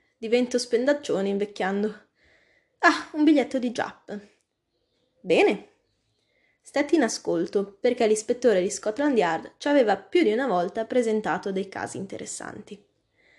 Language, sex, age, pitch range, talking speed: Italian, female, 20-39, 190-255 Hz, 120 wpm